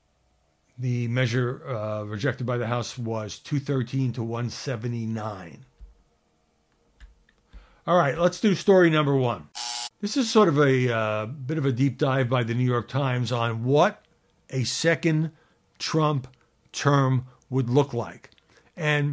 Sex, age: male, 60-79